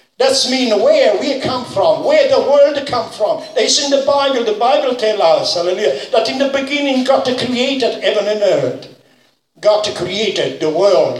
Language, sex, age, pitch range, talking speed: English, male, 60-79, 205-285 Hz, 175 wpm